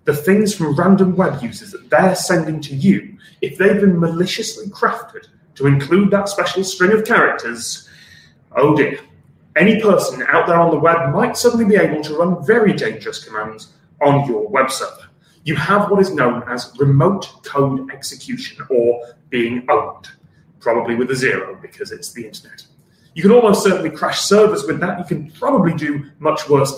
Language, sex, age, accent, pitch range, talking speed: English, male, 30-49, British, 140-200 Hz, 175 wpm